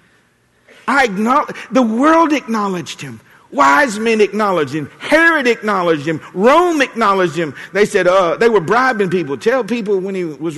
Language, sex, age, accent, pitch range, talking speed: English, male, 50-69, American, 165-235 Hz, 160 wpm